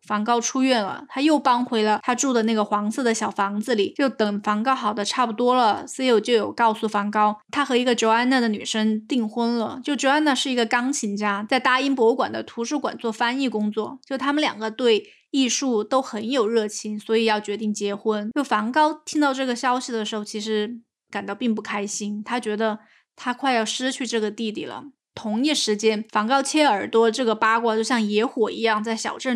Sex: female